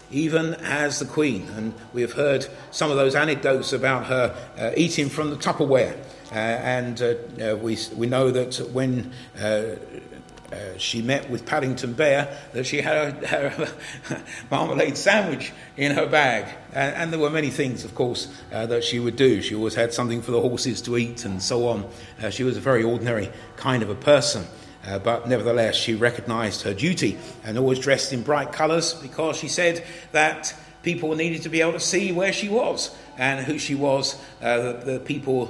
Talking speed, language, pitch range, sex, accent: 195 wpm, English, 120-150 Hz, male, British